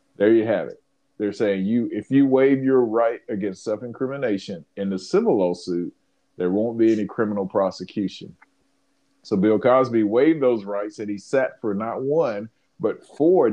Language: English